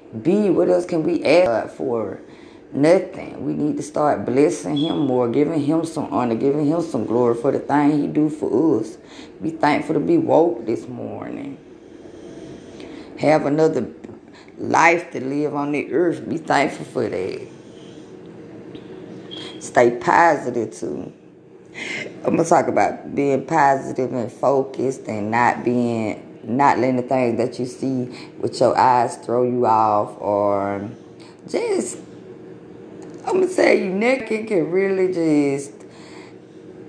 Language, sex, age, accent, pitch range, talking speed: English, female, 20-39, American, 120-160 Hz, 140 wpm